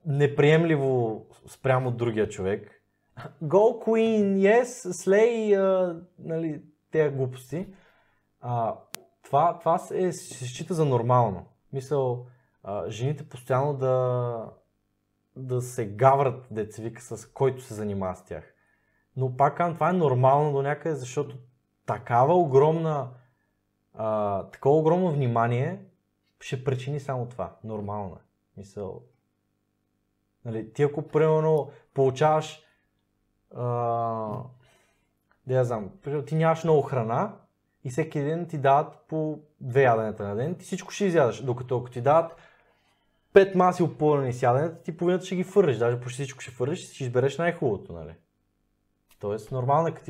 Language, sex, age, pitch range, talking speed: Bulgarian, male, 20-39, 115-155 Hz, 135 wpm